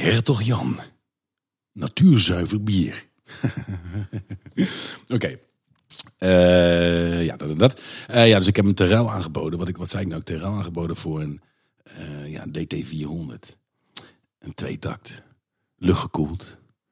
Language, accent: Dutch, Dutch